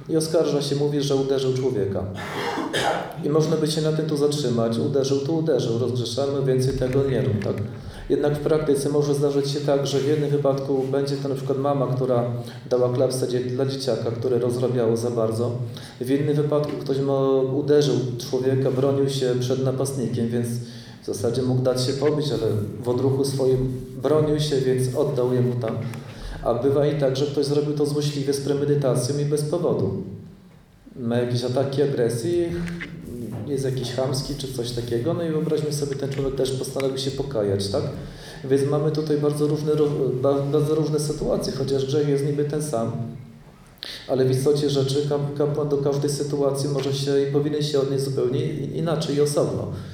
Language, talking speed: Polish, 175 wpm